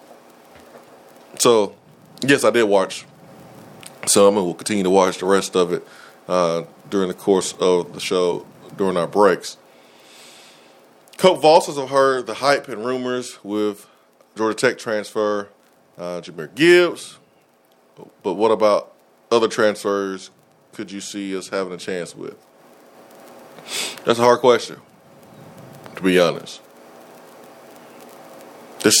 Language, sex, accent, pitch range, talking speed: English, male, American, 100-115 Hz, 125 wpm